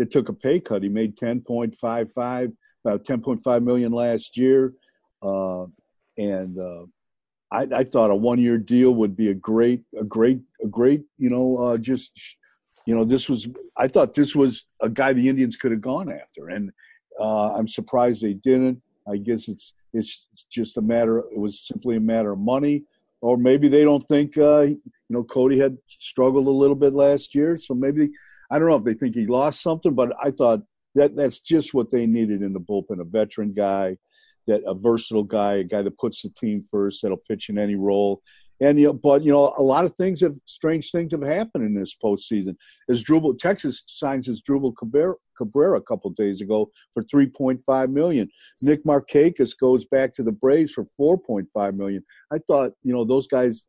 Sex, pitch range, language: male, 110-140 Hz, English